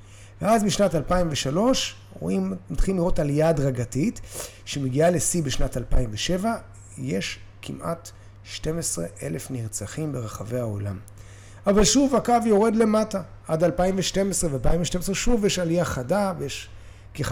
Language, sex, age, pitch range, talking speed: Hebrew, male, 30-49, 105-170 Hz, 115 wpm